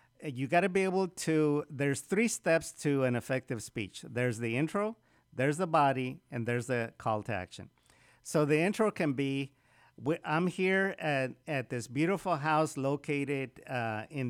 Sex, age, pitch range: male, 50-69, 120-160 Hz